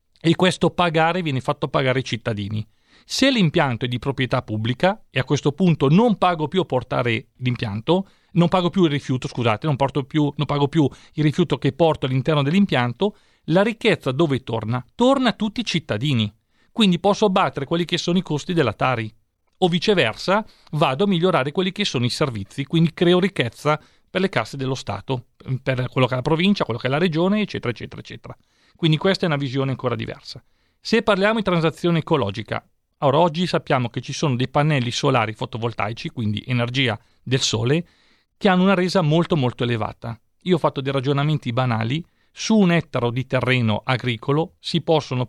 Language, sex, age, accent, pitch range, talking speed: Italian, male, 40-59, native, 125-170 Hz, 165 wpm